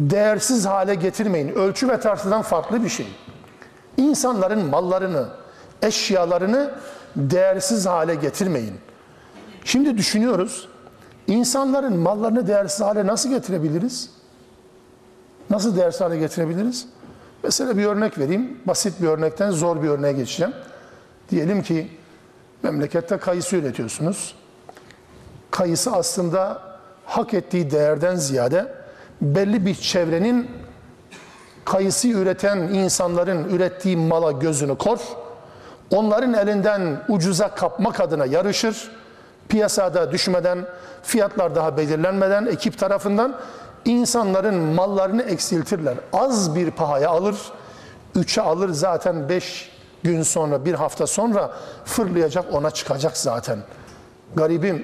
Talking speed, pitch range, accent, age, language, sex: 100 wpm, 170-215 Hz, native, 50-69, Turkish, male